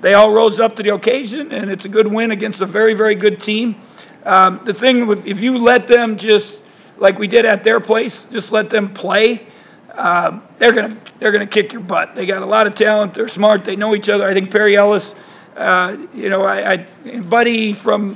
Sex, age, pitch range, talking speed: male, 50-69, 195-220 Hz, 220 wpm